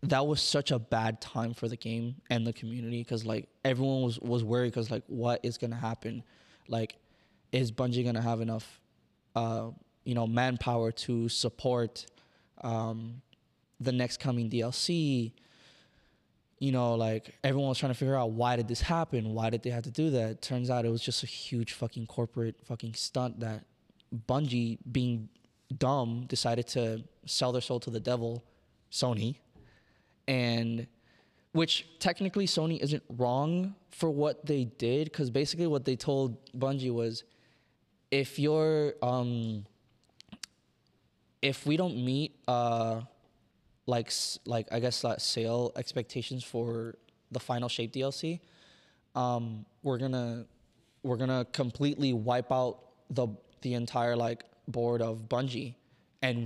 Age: 20-39